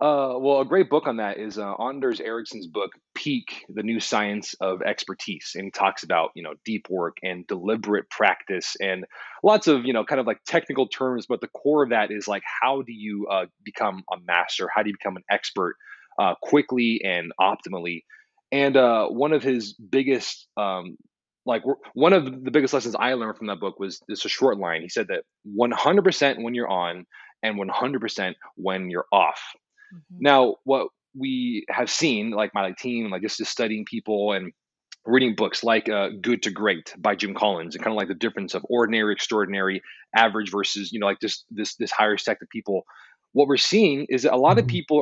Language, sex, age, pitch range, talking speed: English, male, 20-39, 105-140 Hz, 205 wpm